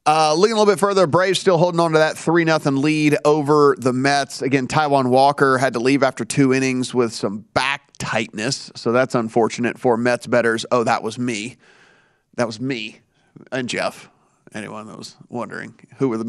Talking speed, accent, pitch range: 190 wpm, American, 130-155 Hz